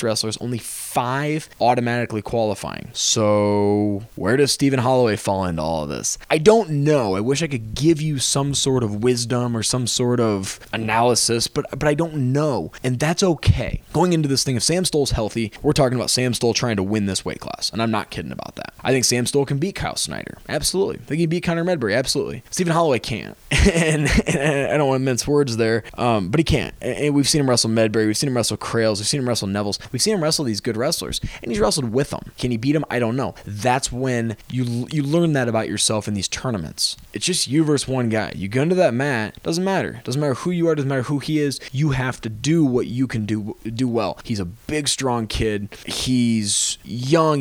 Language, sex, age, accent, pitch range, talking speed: English, male, 20-39, American, 115-145 Hz, 235 wpm